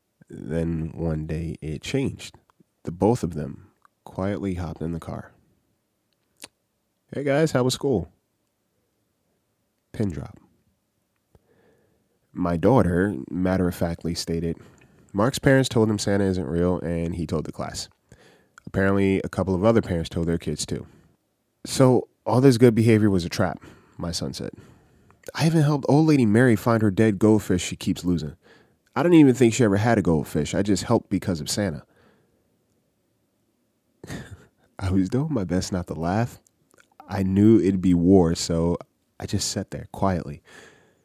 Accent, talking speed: American, 155 wpm